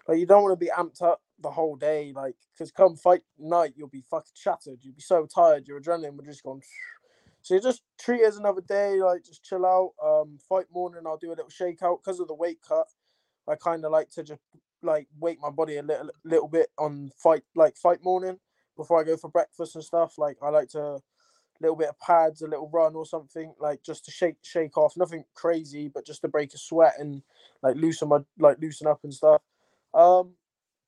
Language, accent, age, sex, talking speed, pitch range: English, British, 20-39, male, 230 wpm, 155-180 Hz